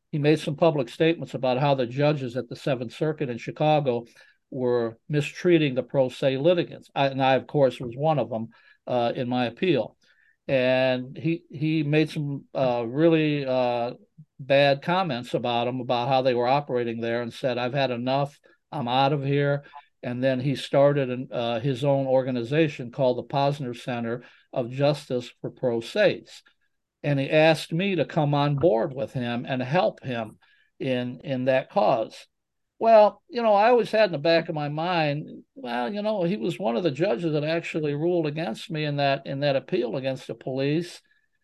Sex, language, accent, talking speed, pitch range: male, English, American, 190 wpm, 125-155 Hz